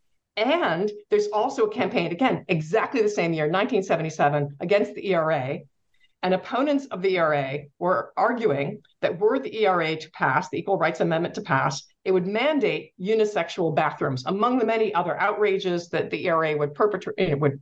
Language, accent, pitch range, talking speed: English, American, 160-210 Hz, 160 wpm